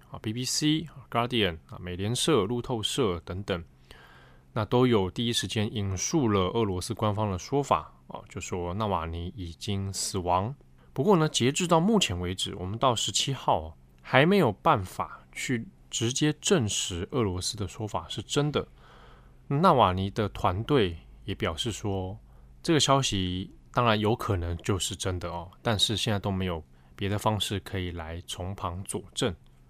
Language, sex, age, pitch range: Chinese, male, 20-39, 85-115 Hz